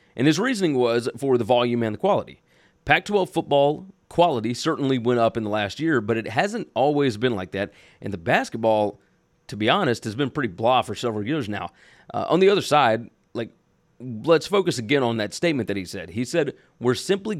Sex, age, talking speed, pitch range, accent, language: male, 30-49, 205 wpm, 115-145 Hz, American, English